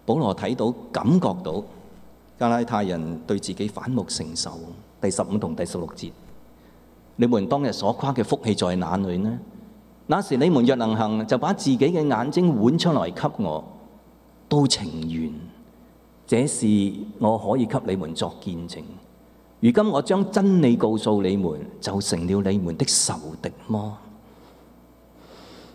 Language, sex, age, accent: English, male, 30-49, Chinese